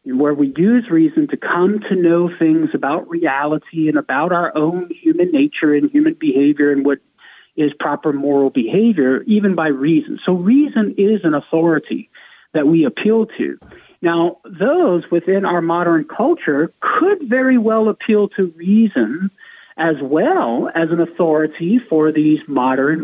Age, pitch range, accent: 50-69, 160-270 Hz, American